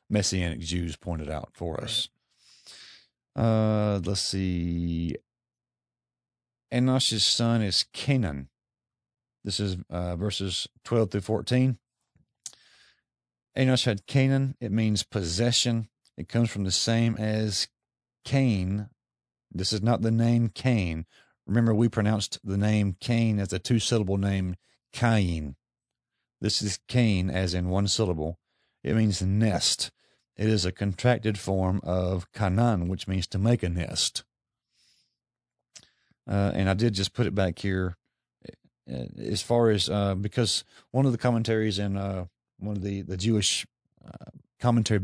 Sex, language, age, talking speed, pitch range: male, English, 50-69, 135 wpm, 90-115 Hz